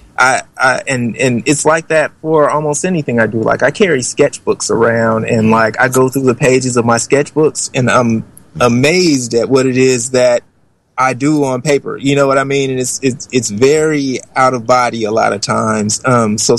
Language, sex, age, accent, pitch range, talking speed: English, male, 20-39, American, 115-135 Hz, 210 wpm